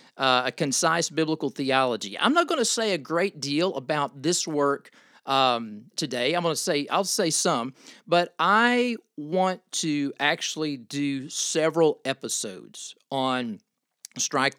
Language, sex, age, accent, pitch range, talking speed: English, male, 40-59, American, 120-180 Hz, 145 wpm